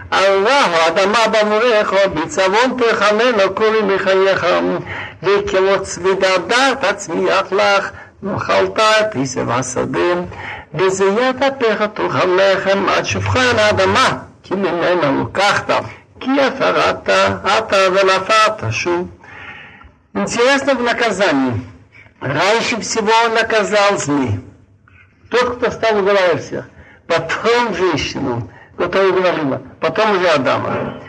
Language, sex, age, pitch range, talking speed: Russian, male, 60-79, 165-220 Hz, 85 wpm